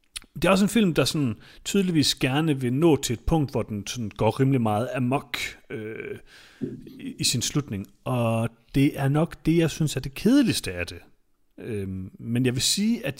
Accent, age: native, 30-49